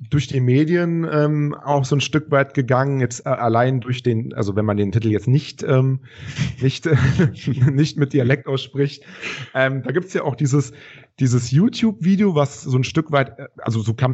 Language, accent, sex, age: German, German, male, 40-59